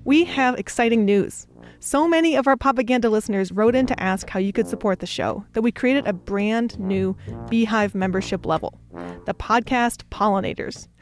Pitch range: 195-255 Hz